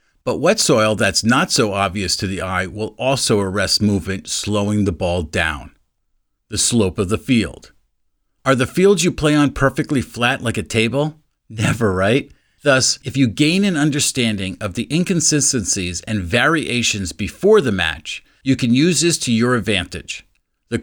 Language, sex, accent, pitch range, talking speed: English, male, American, 100-135 Hz, 165 wpm